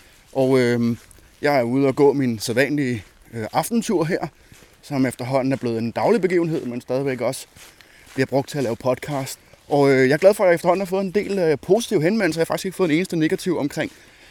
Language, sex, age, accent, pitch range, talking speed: Danish, male, 20-39, native, 130-165 Hz, 225 wpm